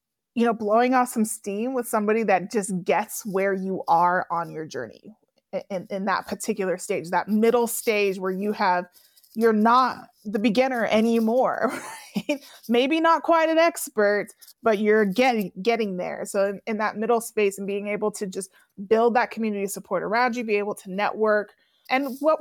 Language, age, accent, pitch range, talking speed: English, 20-39, American, 195-245 Hz, 180 wpm